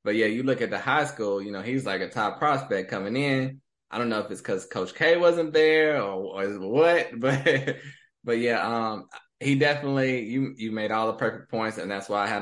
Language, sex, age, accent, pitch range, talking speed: English, male, 20-39, American, 105-135 Hz, 230 wpm